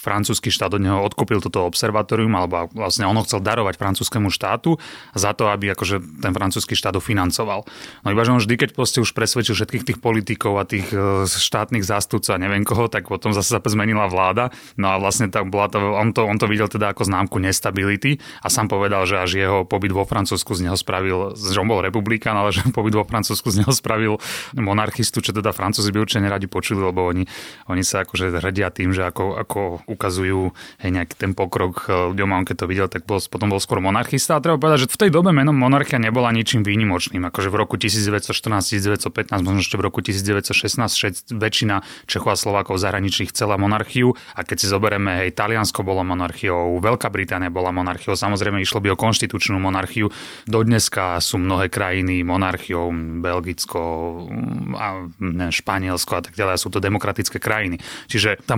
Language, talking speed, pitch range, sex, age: Slovak, 180 wpm, 95-110 Hz, male, 30-49